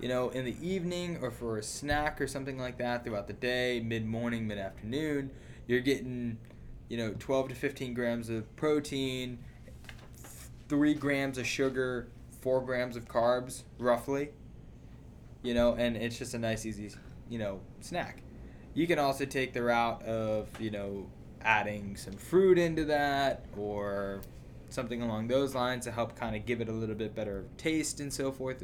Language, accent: English, American